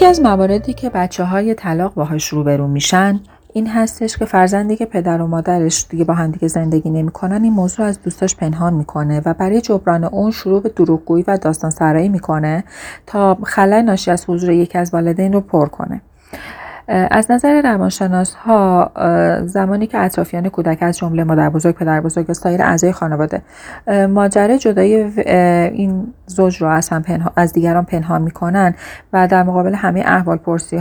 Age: 30-49